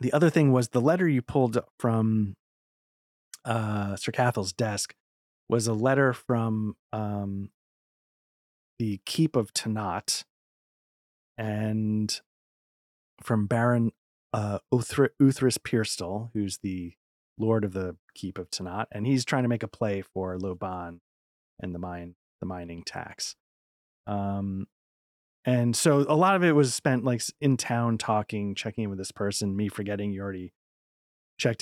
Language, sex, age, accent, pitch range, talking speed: English, male, 30-49, American, 95-120 Hz, 140 wpm